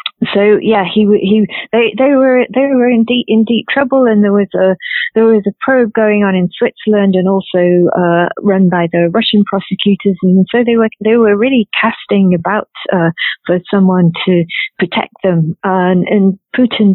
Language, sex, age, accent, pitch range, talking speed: English, female, 50-69, British, 170-210 Hz, 190 wpm